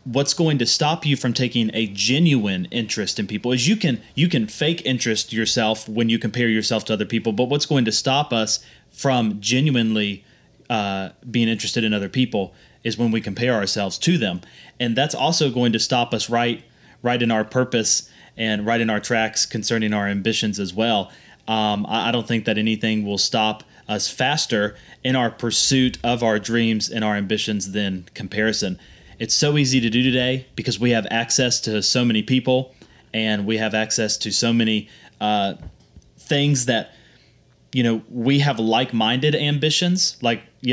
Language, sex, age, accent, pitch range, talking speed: English, male, 30-49, American, 110-130 Hz, 185 wpm